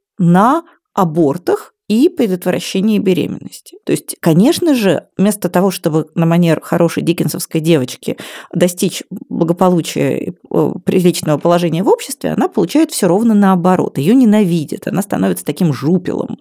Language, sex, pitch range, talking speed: Russian, female, 165-230 Hz, 130 wpm